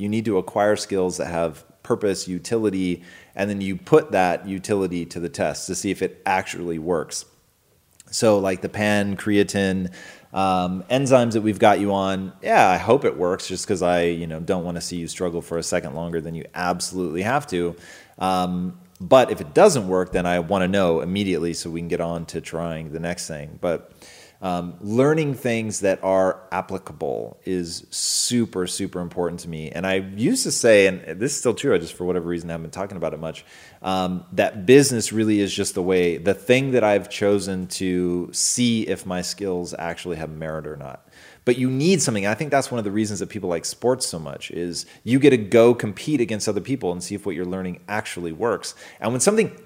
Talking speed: 215 wpm